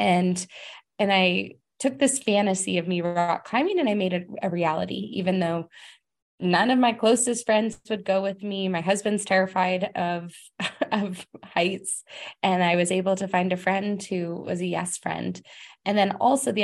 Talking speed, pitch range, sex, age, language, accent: 180 wpm, 180-220 Hz, female, 20-39, English, American